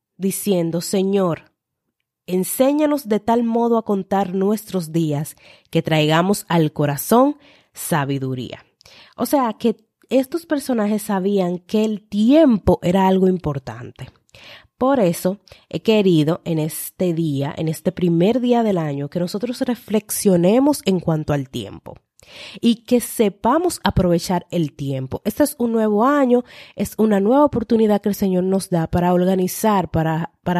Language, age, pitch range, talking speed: Spanish, 30-49, 165-220 Hz, 140 wpm